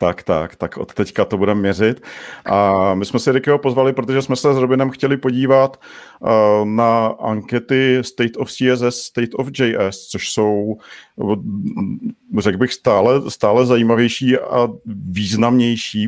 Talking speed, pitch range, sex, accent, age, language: 140 wpm, 105-125 Hz, male, native, 40-59, Czech